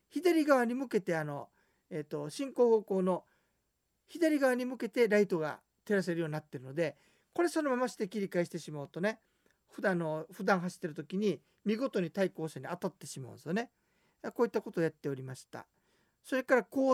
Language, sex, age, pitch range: Japanese, male, 50-69, 160-225 Hz